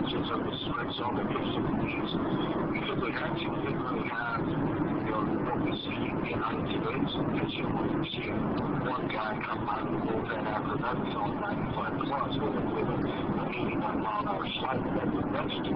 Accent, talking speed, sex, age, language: American, 165 wpm, male, 60-79, English